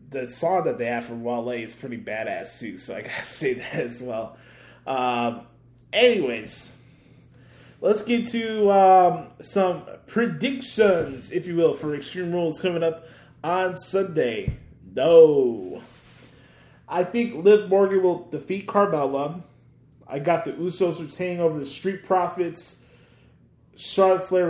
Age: 20-39